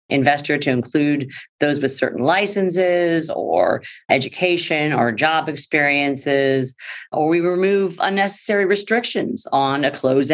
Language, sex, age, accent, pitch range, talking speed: English, female, 50-69, American, 130-160 Hz, 115 wpm